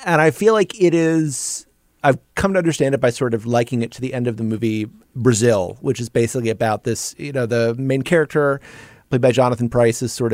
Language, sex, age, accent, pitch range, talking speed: English, male, 30-49, American, 110-135 Hz, 225 wpm